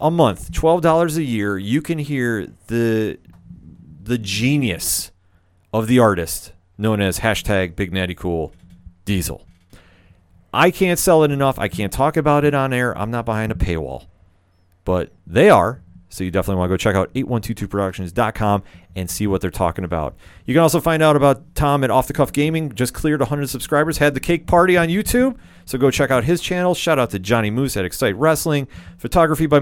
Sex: male